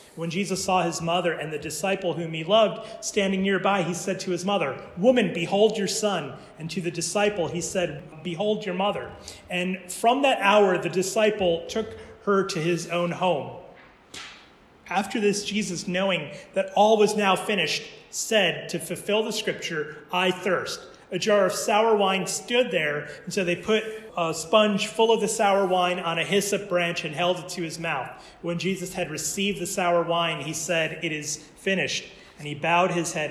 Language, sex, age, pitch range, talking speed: English, male, 30-49, 170-205 Hz, 185 wpm